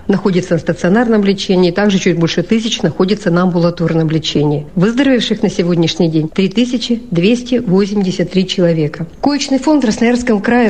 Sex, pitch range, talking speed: female, 180-230 Hz, 130 wpm